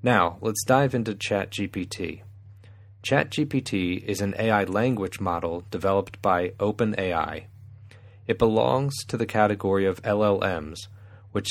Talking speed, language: 115 wpm, English